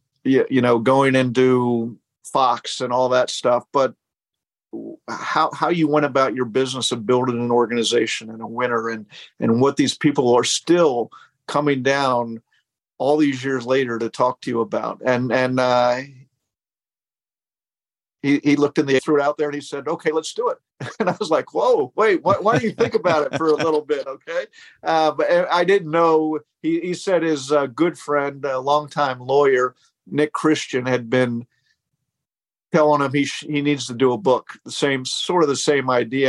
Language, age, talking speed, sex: English, 50-69, 190 wpm, male